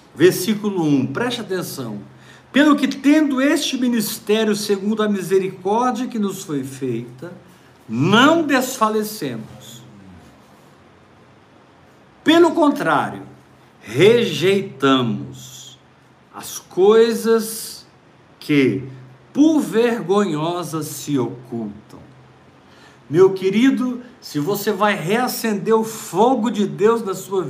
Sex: male